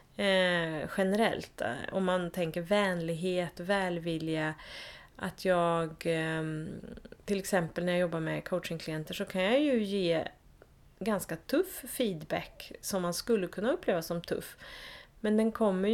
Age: 30-49